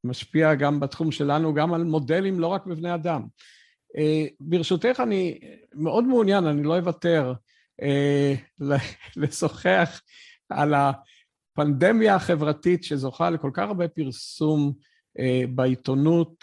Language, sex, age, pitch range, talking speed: Hebrew, male, 50-69, 135-175 Hz, 100 wpm